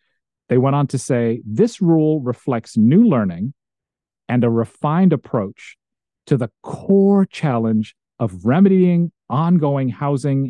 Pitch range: 115-160 Hz